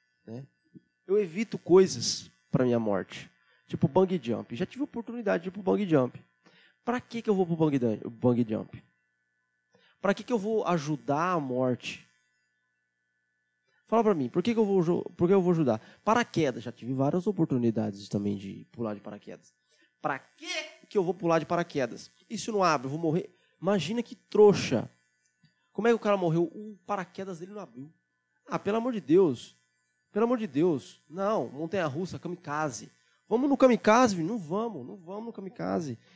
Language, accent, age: Portuguese, Brazilian, 20-39